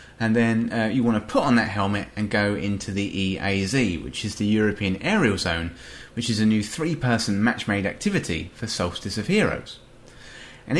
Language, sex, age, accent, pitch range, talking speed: English, male, 30-49, British, 100-130 Hz, 185 wpm